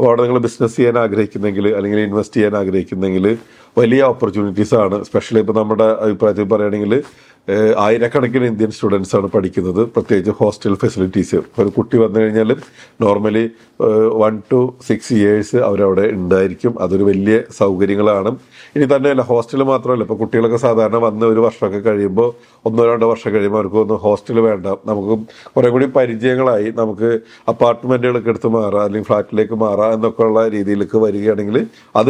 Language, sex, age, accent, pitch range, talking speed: English, male, 50-69, Indian, 100-115 Hz, 105 wpm